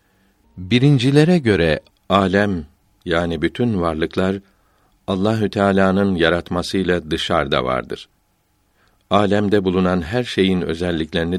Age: 60-79